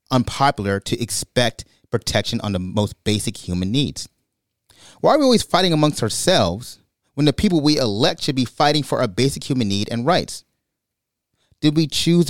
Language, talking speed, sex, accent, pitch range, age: English, 170 wpm, male, American, 100-140 Hz, 30-49